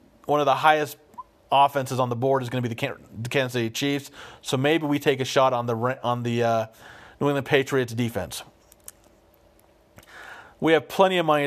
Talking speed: 190 wpm